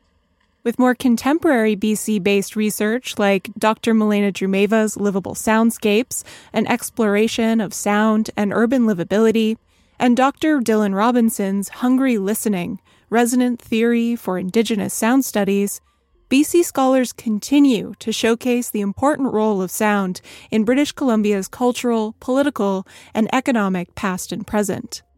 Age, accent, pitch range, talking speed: 20-39, American, 205-255 Hz, 120 wpm